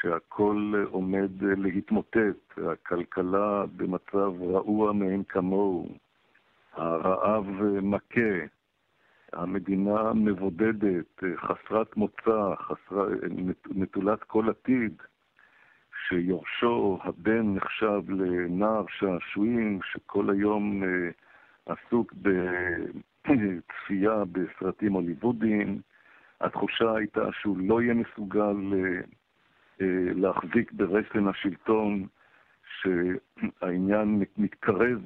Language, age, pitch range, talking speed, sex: Hebrew, 60-79, 95-110 Hz, 70 wpm, male